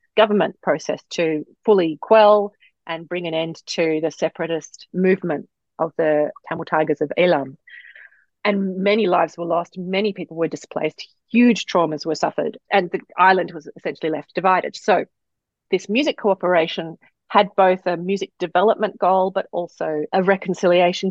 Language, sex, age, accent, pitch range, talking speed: English, female, 30-49, Australian, 170-205 Hz, 150 wpm